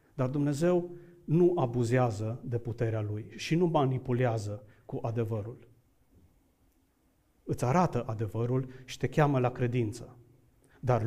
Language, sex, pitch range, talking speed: Romanian, male, 125-160 Hz, 115 wpm